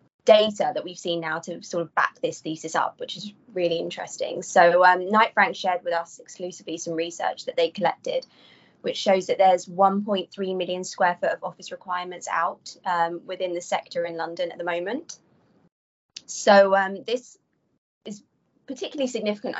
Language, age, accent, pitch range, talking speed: English, 20-39, British, 170-200 Hz, 170 wpm